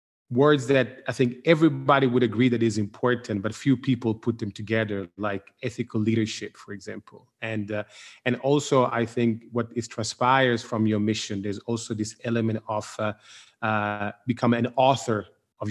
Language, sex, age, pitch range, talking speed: English, male, 30-49, 110-135 Hz, 170 wpm